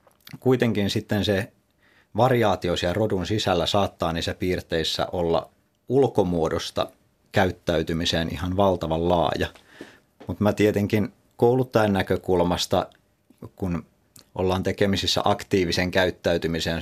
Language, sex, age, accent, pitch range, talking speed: Finnish, male, 30-49, native, 85-100 Hz, 90 wpm